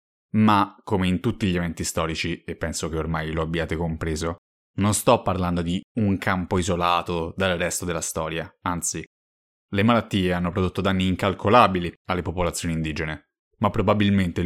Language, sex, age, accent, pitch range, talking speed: Italian, male, 20-39, native, 85-105 Hz, 160 wpm